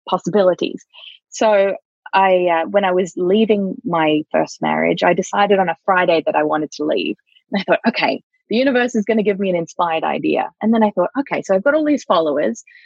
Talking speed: 215 wpm